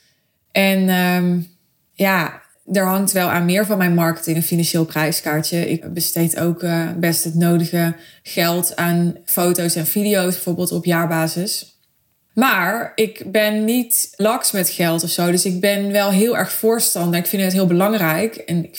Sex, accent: female, Dutch